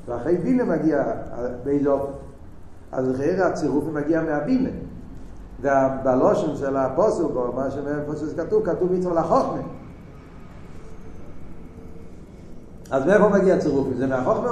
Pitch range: 90-135 Hz